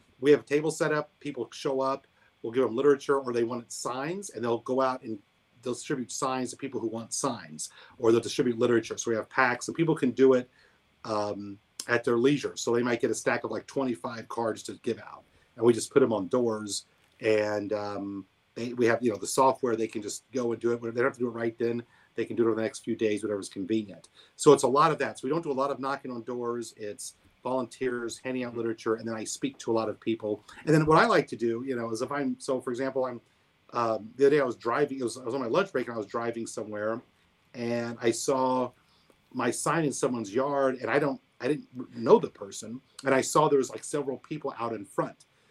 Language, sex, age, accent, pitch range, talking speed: English, male, 40-59, American, 115-140 Hz, 255 wpm